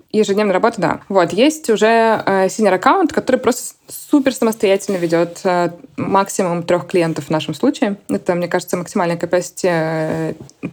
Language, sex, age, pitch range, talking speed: Russian, female, 20-39, 175-210 Hz, 150 wpm